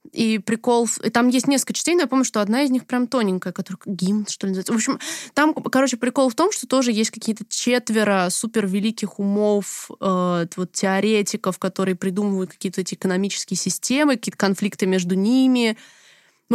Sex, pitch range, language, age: female, 195-245 Hz, Russian, 20-39